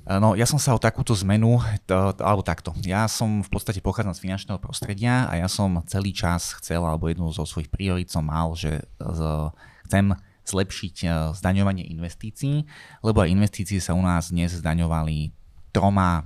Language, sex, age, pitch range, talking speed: Slovak, male, 20-39, 80-105 Hz, 170 wpm